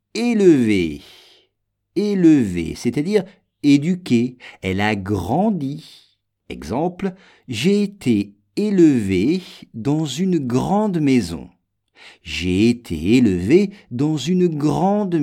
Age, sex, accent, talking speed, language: 50-69, male, French, 85 wpm, English